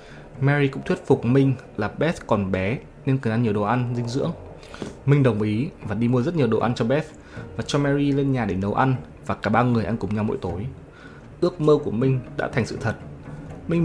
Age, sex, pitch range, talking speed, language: 20-39, male, 105-135 Hz, 240 wpm, Vietnamese